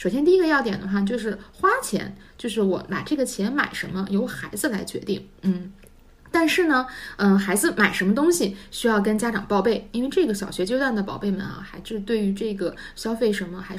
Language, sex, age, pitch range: Chinese, female, 50-69, 195-245 Hz